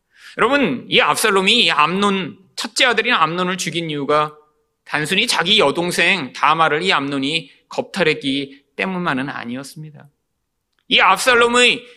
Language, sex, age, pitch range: Korean, male, 30-49, 150-245 Hz